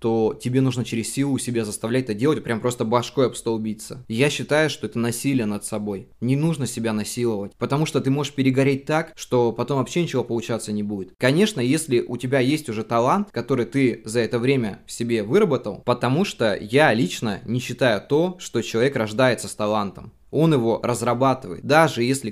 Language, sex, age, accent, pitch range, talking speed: Russian, male, 20-39, native, 115-135 Hz, 185 wpm